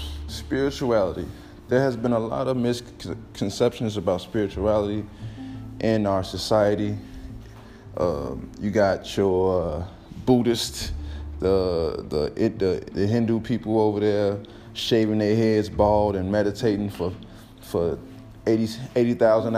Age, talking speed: 20-39, 115 wpm